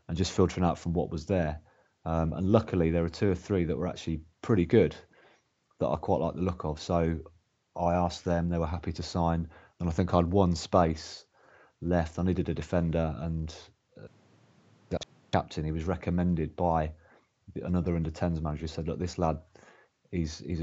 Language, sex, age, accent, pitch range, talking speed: English, male, 30-49, British, 80-95 Hz, 190 wpm